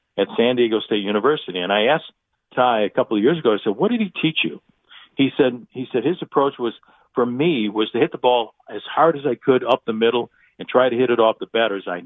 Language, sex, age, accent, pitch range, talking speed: English, male, 50-69, American, 110-135 Hz, 260 wpm